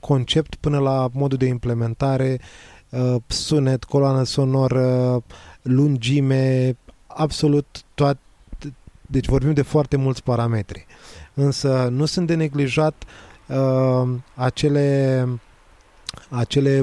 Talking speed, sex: 90 wpm, male